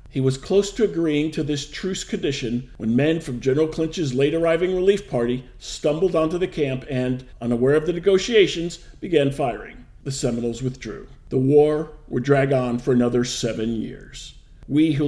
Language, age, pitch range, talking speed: English, 50-69, 125-170 Hz, 165 wpm